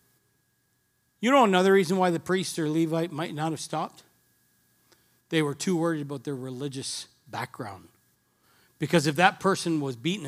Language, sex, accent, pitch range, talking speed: English, male, American, 125-215 Hz, 160 wpm